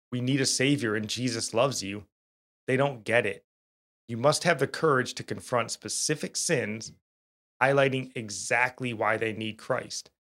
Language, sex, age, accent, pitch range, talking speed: English, male, 30-49, American, 105-135 Hz, 160 wpm